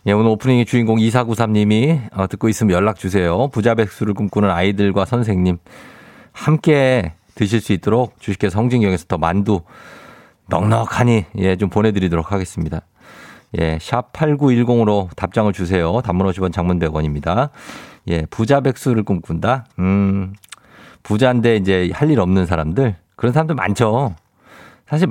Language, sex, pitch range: Korean, male, 95-140 Hz